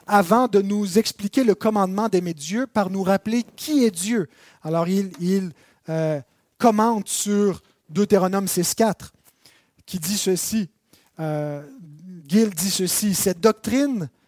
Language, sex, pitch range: French, male, 180-220 Hz